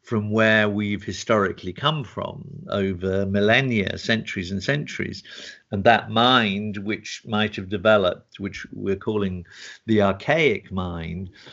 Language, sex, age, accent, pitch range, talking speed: English, male, 50-69, British, 100-115 Hz, 125 wpm